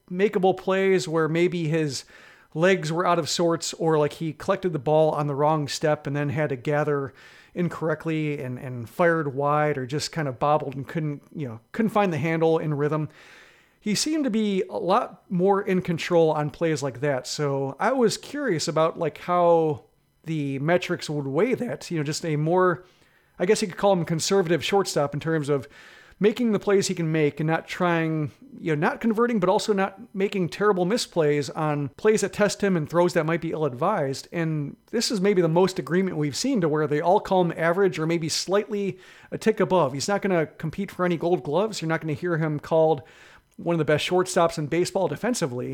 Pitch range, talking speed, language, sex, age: 150-190 Hz, 215 wpm, English, male, 40-59